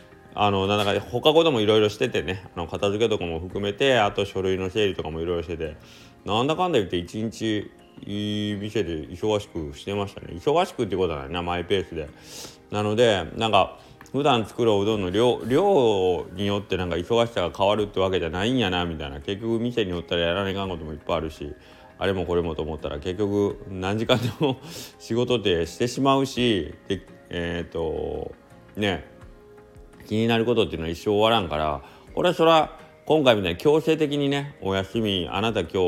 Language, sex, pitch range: Japanese, male, 85-115 Hz